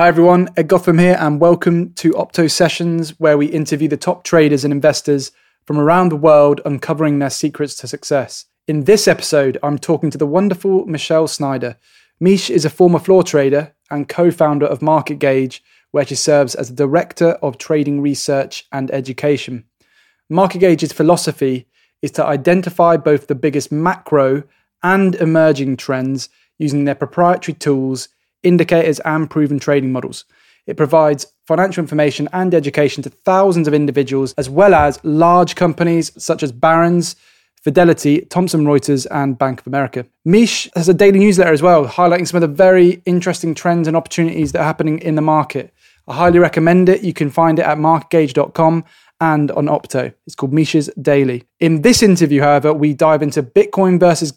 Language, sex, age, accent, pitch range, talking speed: English, male, 20-39, British, 145-175 Hz, 170 wpm